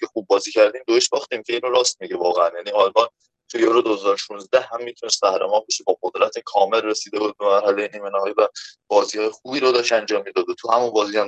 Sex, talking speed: male, 215 wpm